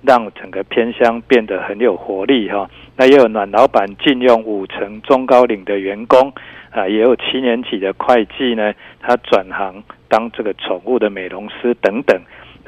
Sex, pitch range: male, 110-130 Hz